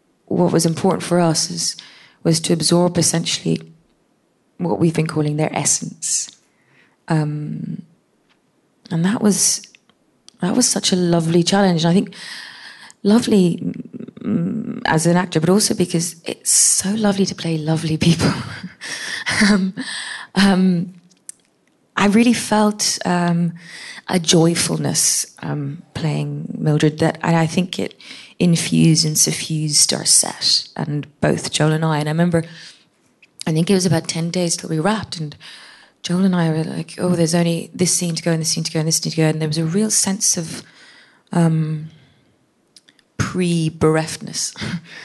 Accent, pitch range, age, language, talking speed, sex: British, 160-190 Hz, 20-39, English, 155 wpm, female